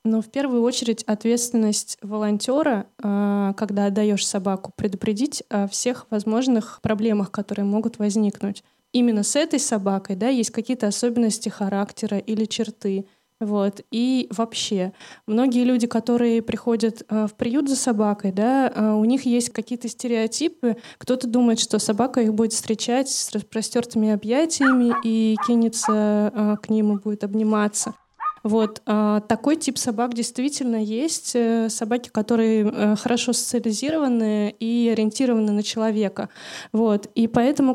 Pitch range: 215-245 Hz